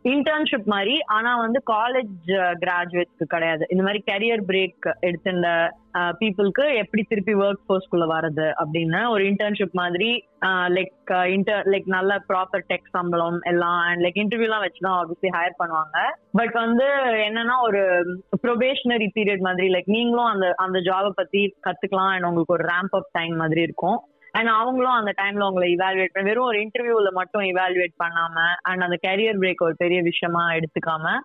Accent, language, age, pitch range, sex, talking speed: native, Tamil, 20-39, 175-220 Hz, female, 140 wpm